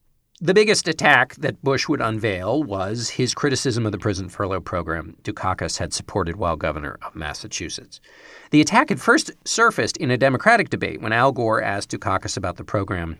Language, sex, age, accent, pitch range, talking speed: English, male, 50-69, American, 95-135 Hz, 175 wpm